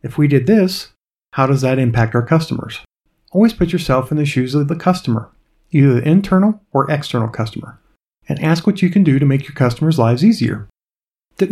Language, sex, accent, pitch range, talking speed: English, male, American, 135-170 Hz, 200 wpm